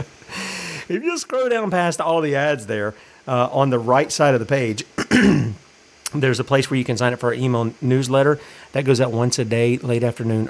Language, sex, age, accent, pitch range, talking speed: English, male, 40-59, American, 120-155 Hz, 210 wpm